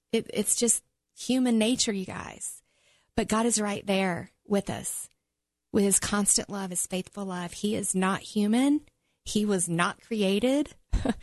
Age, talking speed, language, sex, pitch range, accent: 40-59, 150 wpm, English, female, 180-215 Hz, American